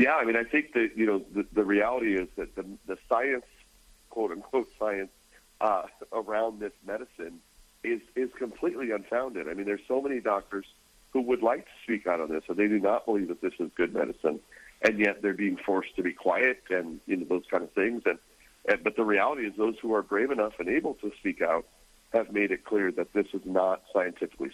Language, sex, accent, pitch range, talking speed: English, male, American, 100-125 Hz, 225 wpm